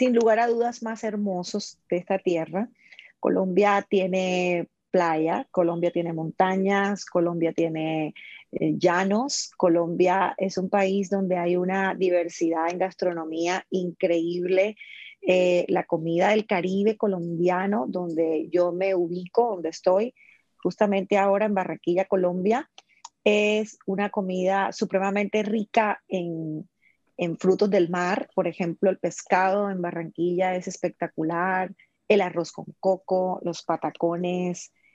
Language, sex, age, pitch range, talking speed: Spanish, female, 30-49, 175-210 Hz, 120 wpm